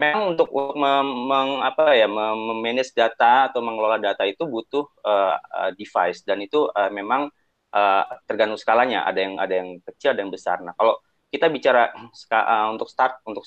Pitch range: 100-135 Hz